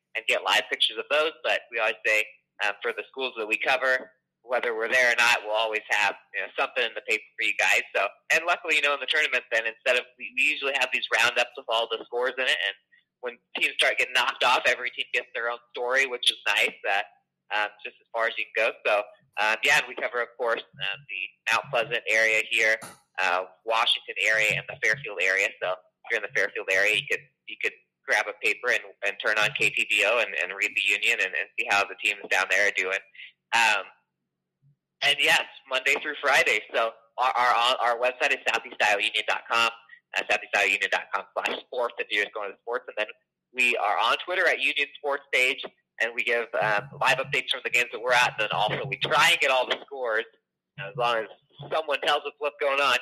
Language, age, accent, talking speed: English, 30-49, American, 230 wpm